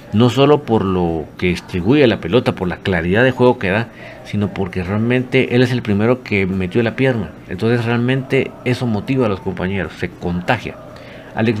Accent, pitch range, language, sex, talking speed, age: Mexican, 95-125 Hz, Spanish, male, 185 wpm, 50-69